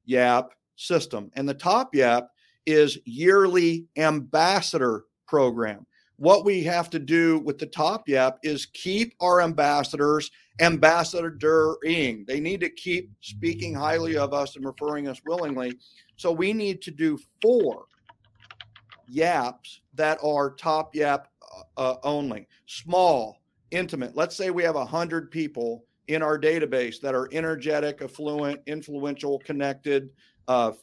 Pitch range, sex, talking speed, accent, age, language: 140-165 Hz, male, 130 wpm, American, 50-69, English